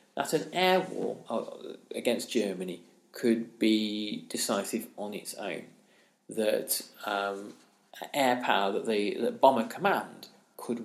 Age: 40-59